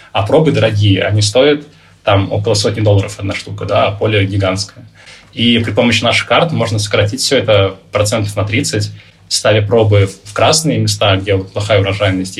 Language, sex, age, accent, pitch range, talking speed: Russian, male, 20-39, native, 100-115 Hz, 170 wpm